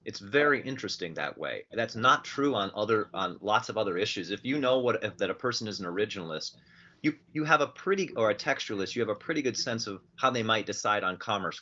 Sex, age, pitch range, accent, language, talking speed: male, 30-49, 90-115 Hz, American, English, 245 wpm